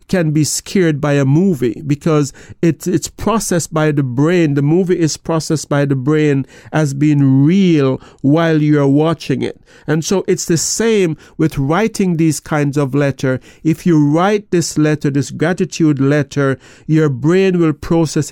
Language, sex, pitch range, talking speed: English, male, 145-170 Hz, 165 wpm